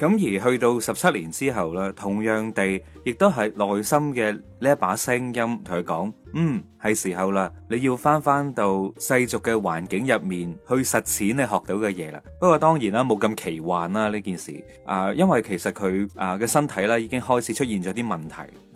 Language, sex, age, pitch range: Chinese, male, 20-39, 100-140 Hz